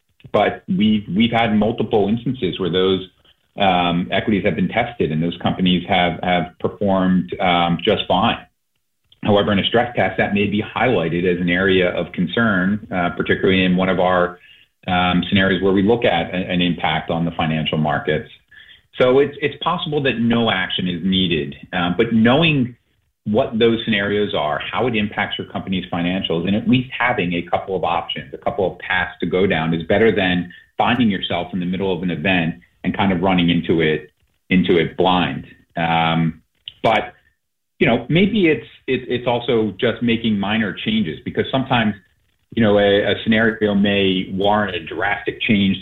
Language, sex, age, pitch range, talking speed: English, male, 30-49, 90-115 Hz, 180 wpm